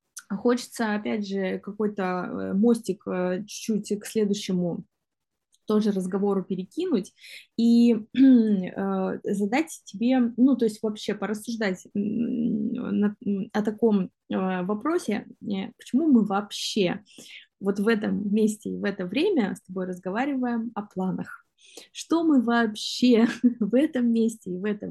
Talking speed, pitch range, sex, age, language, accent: 115 wpm, 195-240 Hz, female, 20-39, Russian, native